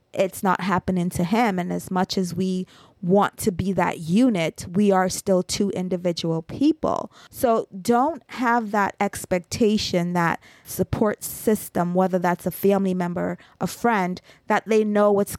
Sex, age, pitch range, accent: female, 20-39, 175-205 Hz, American